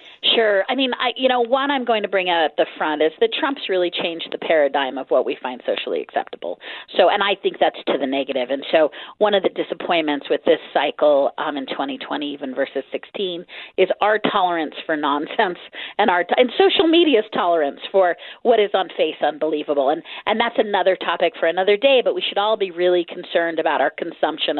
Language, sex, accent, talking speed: English, female, American, 210 wpm